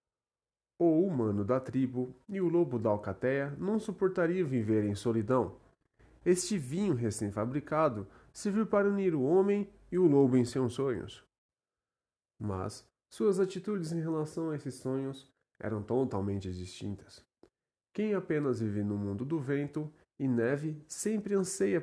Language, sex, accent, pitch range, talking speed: Portuguese, male, Brazilian, 110-160 Hz, 135 wpm